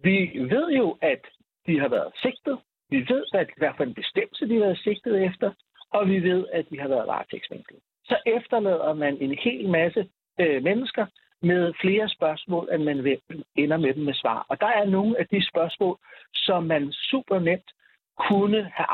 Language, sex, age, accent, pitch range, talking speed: Danish, male, 60-79, native, 160-210 Hz, 185 wpm